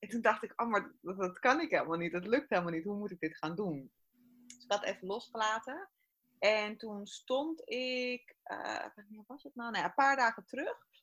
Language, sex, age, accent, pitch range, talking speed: Dutch, female, 20-39, Dutch, 175-230 Hz, 220 wpm